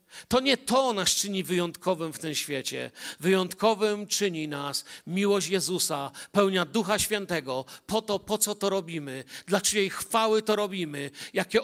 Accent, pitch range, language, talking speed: native, 175-235 Hz, Polish, 150 wpm